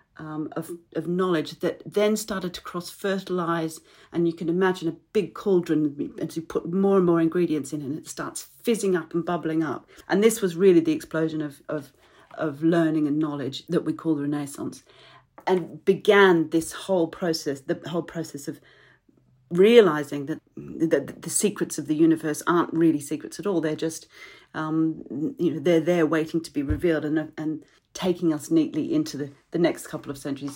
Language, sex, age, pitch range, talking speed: English, female, 40-59, 150-180 Hz, 185 wpm